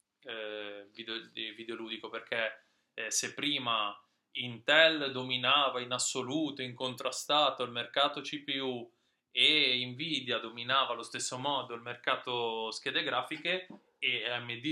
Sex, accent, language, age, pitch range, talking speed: male, native, Italian, 20-39, 110-130 Hz, 115 wpm